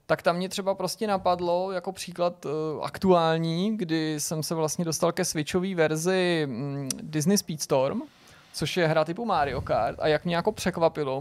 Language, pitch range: Czech, 145-175 Hz